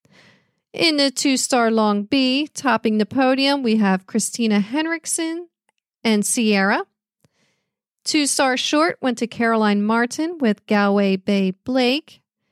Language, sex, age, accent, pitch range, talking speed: English, female, 40-59, American, 215-275 Hz, 125 wpm